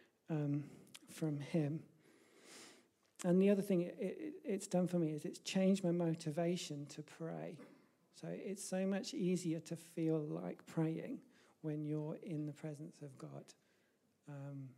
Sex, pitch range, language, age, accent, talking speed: male, 150-170 Hz, English, 40-59, British, 140 wpm